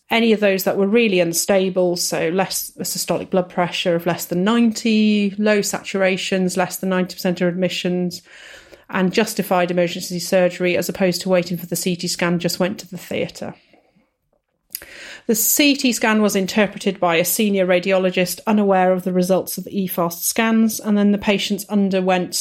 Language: English